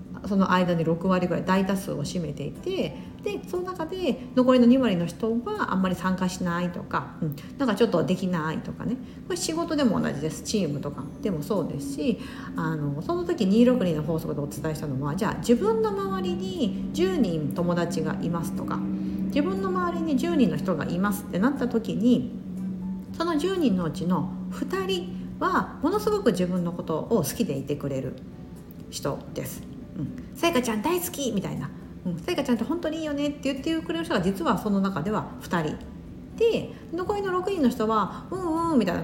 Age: 50-69